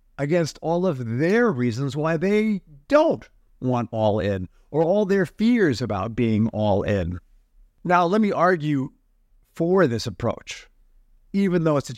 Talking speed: 150 wpm